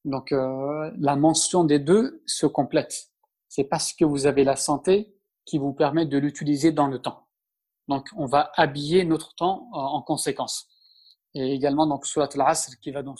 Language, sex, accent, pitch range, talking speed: French, male, French, 140-170 Hz, 175 wpm